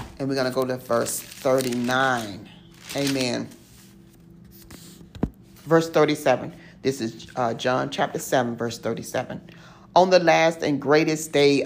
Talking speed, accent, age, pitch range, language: 130 wpm, American, 40-59, 130-175 Hz, English